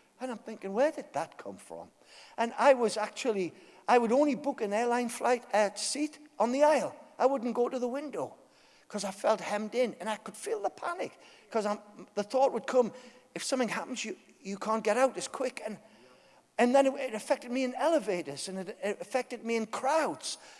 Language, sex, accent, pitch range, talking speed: English, male, British, 205-275 Hz, 210 wpm